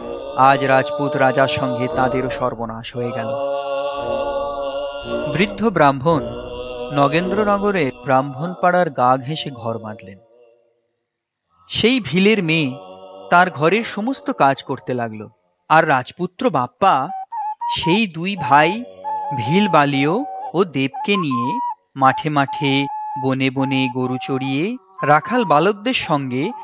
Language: Bengali